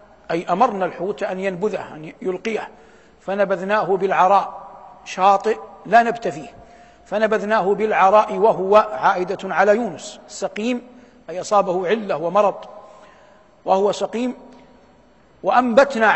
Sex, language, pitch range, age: male, Arabic, 185-215 Hz, 60-79